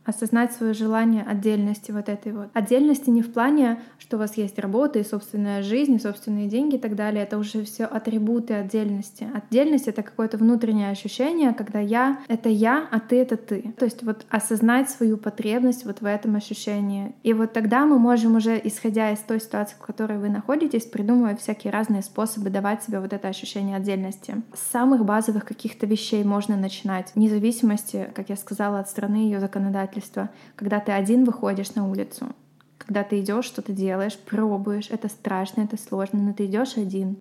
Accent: native